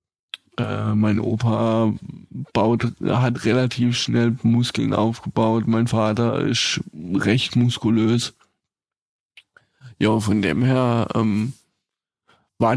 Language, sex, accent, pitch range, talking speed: German, male, German, 110-125 Hz, 95 wpm